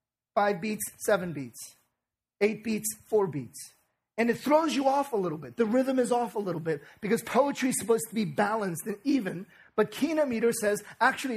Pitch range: 175-230 Hz